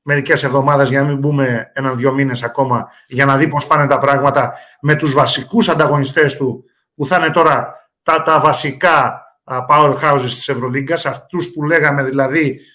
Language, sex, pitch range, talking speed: Greek, male, 140-190 Hz, 160 wpm